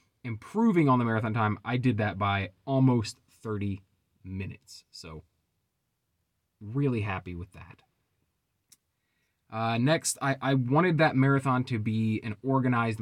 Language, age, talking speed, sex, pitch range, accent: English, 20-39, 130 wpm, male, 95-125 Hz, American